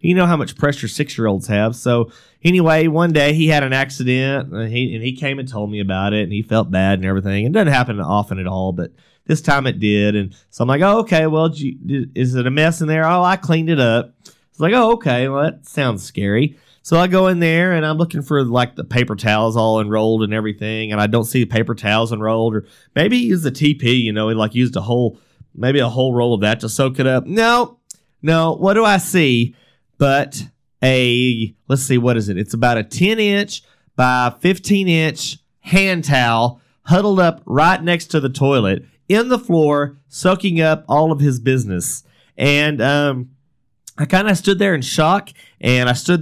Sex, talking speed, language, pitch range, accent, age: male, 220 wpm, English, 115-160 Hz, American, 30-49